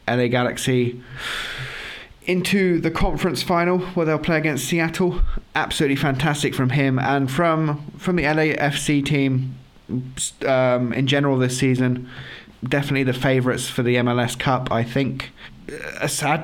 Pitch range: 130-160 Hz